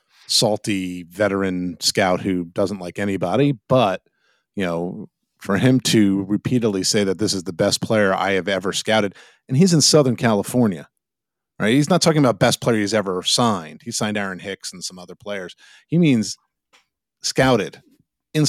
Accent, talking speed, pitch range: American, 170 wpm, 95-115 Hz